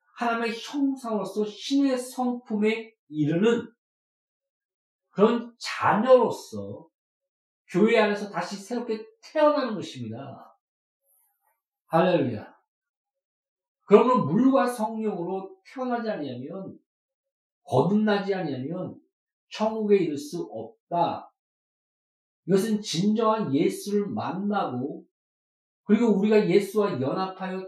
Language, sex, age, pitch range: Korean, male, 50-69, 190-250 Hz